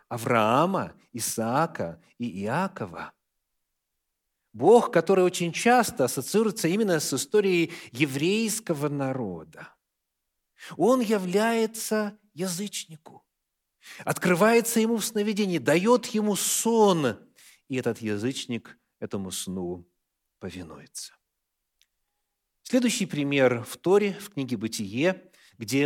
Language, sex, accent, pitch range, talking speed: Russian, male, native, 120-195 Hz, 90 wpm